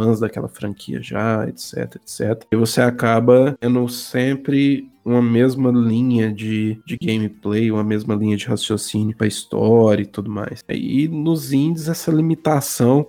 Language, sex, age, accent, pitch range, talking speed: Portuguese, male, 20-39, Brazilian, 110-140 Hz, 140 wpm